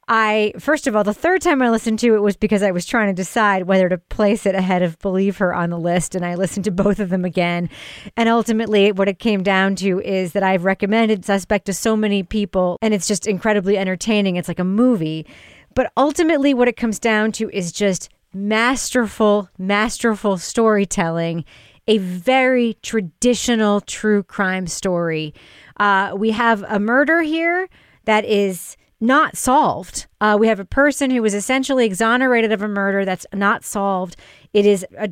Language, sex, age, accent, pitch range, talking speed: English, female, 30-49, American, 190-235 Hz, 185 wpm